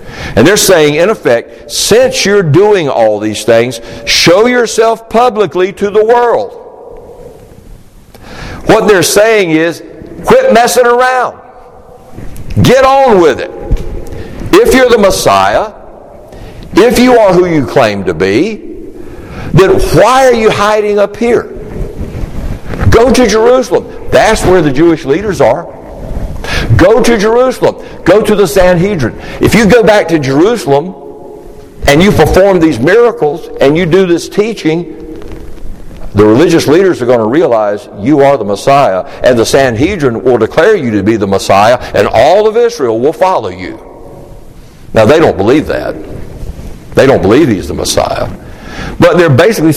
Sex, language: male, English